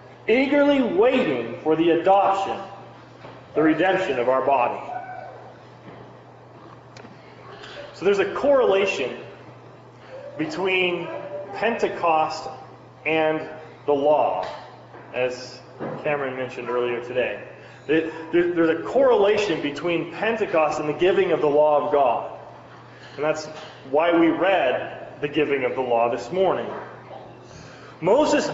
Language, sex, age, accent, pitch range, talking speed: English, male, 30-49, American, 145-205 Hz, 105 wpm